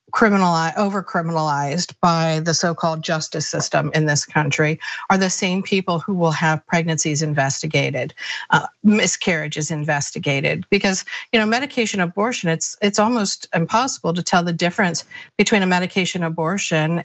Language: English